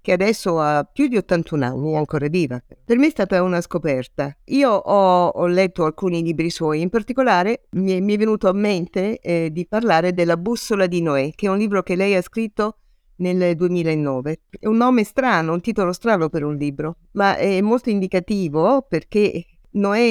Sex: female